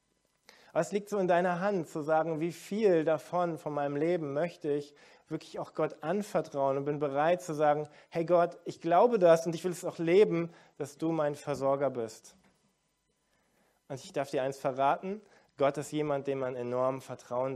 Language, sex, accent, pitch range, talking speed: German, male, German, 140-170 Hz, 185 wpm